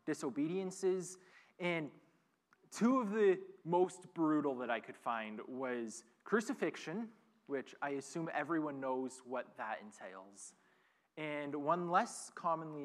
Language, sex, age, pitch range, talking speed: English, male, 20-39, 145-190 Hz, 115 wpm